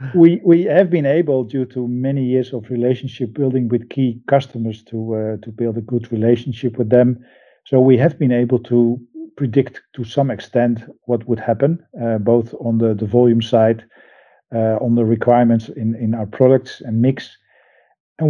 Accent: Dutch